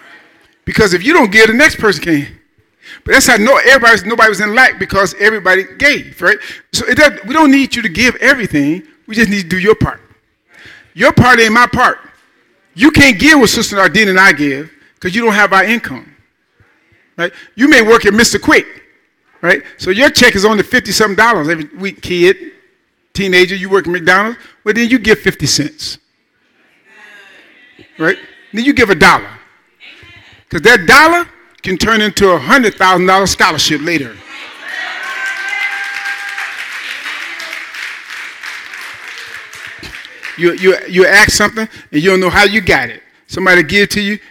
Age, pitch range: 50-69, 170-230 Hz